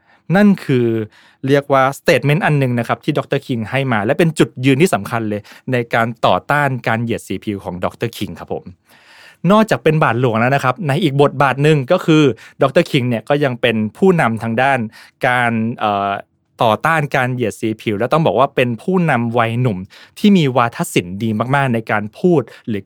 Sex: male